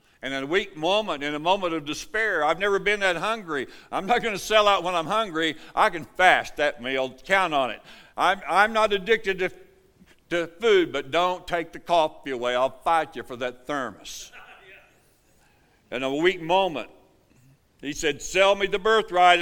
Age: 60-79